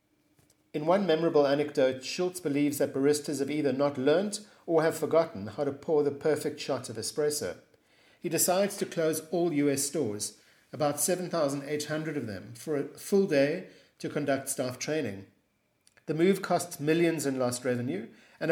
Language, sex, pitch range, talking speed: English, male, 130-160 Hz, 160 wpm